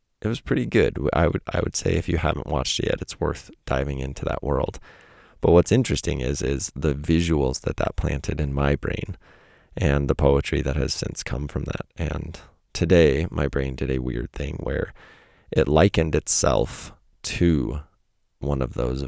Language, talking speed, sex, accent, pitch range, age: English, 185 wpm, male, American, 65-80 Hz, 30-49